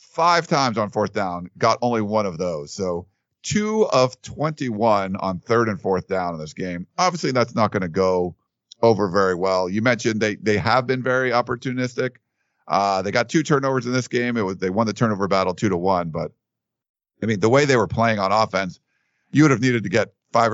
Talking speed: 215 wpm